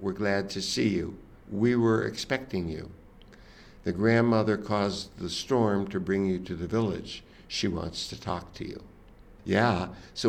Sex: male